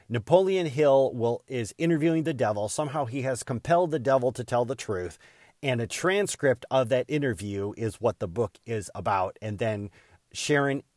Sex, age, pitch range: male, 40-59, 100-130 Hz